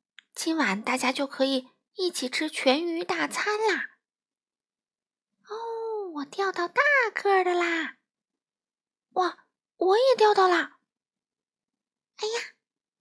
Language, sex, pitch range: Chinese, female, 220-370 Hz